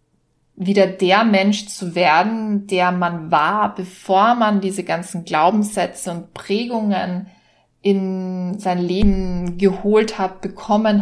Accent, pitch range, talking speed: German, 180-205 Hz, 115 wpm